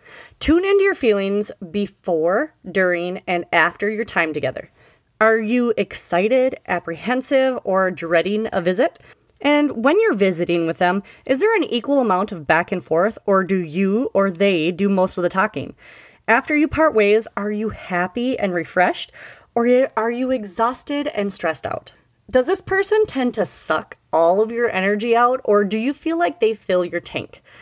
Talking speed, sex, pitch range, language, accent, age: 175 wpm, female, 180-265 Hz, English, American, 30-49